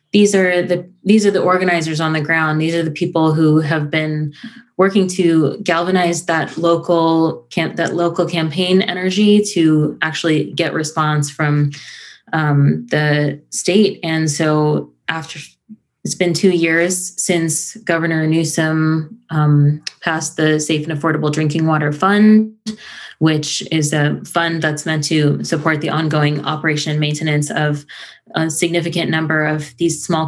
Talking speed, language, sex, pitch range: 145 wpm, English, female, 150-170 Hz